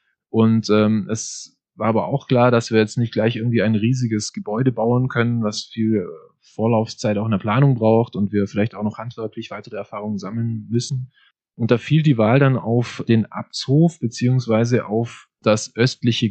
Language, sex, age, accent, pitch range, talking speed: German, male, 20-39, German, 110-130 Hz, 180 wpm